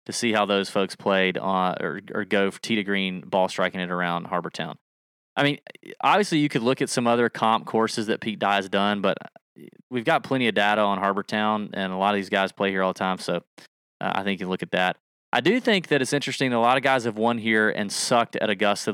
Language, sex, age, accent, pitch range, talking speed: English, male, 20-39, American, 95-130 Hz, 245 wpm